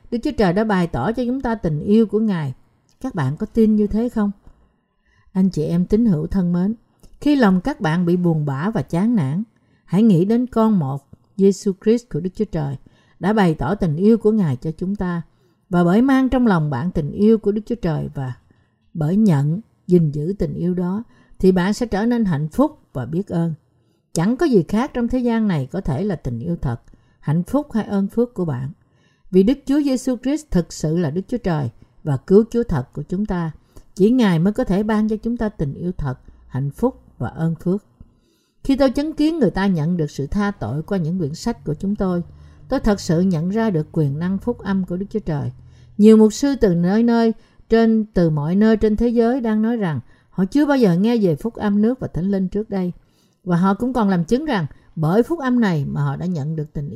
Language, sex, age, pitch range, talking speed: Vietnamese, female, 60-79, 160-220 Hz, 235 wpm